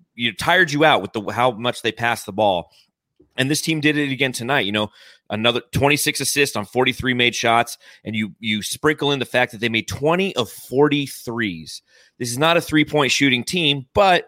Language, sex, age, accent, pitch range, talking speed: English, male, 30-49, American, 110-145 Hz, 210 wpm